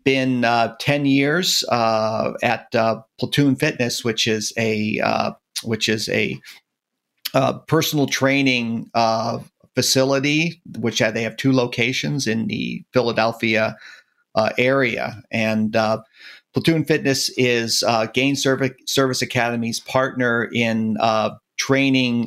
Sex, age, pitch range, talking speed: male, 50-69, 110-130 Hz, 125 wpm